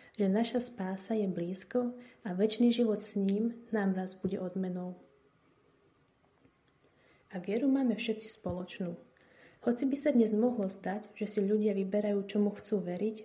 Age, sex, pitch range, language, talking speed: 30-49, female, 185-225 Hz, Slovak, 145 wpm